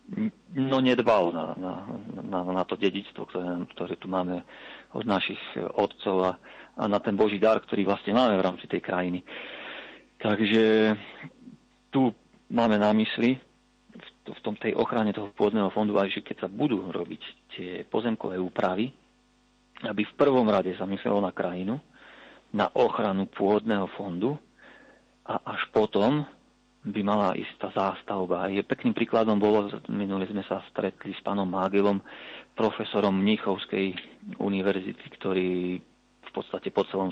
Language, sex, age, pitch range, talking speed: Slovak, male, 40-59, 95-105 Hz, 140 wpm